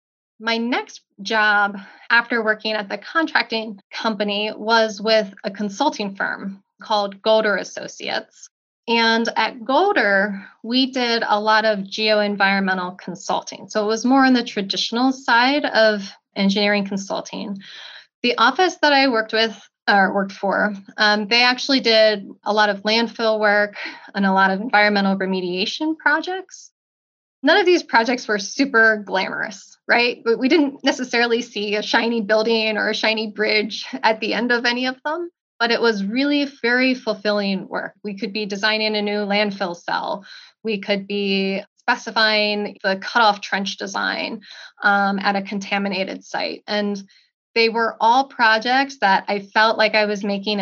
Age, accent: 10-29, American